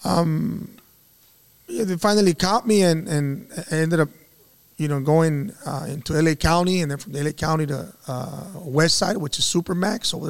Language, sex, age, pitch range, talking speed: English, male, 30-49, 150-185 Hz, 180 wpm